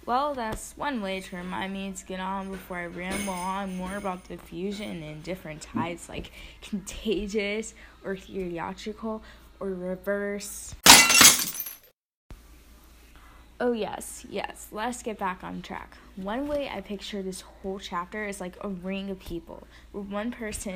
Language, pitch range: English, 185-230 Hz